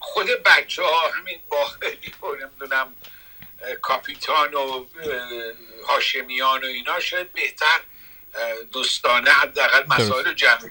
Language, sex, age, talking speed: Persian, male, 60-79, 105 wpm